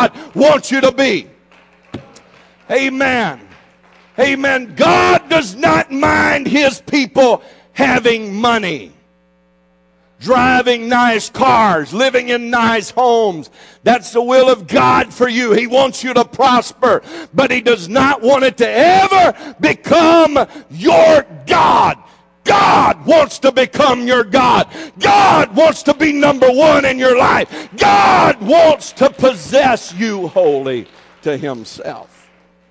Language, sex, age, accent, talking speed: English, male, 50-69, American, 125 wpm